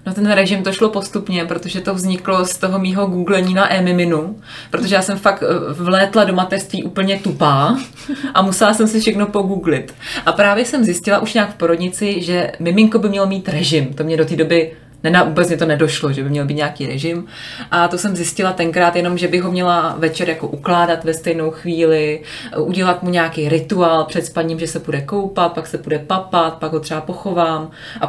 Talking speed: 205 wpm